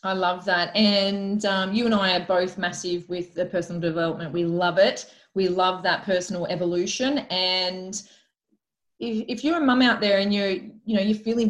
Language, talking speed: English, 195 wpm